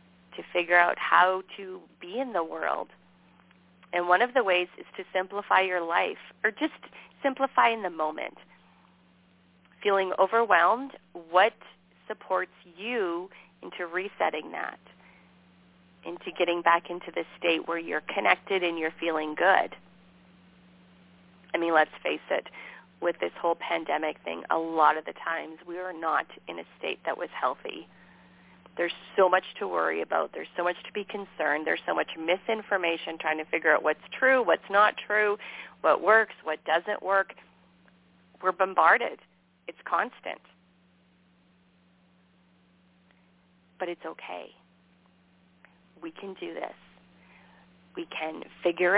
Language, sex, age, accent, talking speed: English, female, 30-49, American, 140 wpm